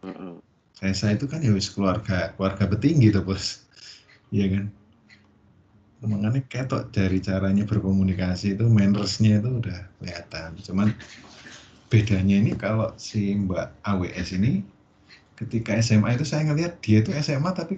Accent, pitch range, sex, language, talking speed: native, 100-125 Hz, male, Indonesian, 130 wpm